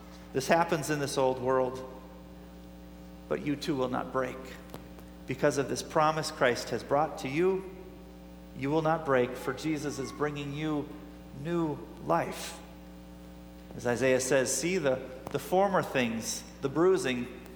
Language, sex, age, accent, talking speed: English, male, 40-59, American, 145 wpm